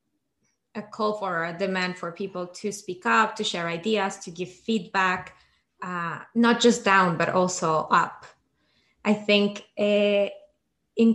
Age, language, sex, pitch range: 20-39, English, female, 175-215 Hz